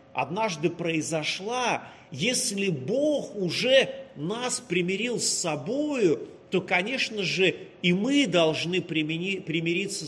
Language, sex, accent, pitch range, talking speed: Russian, male, native, 155-215 Hz, 95 wpm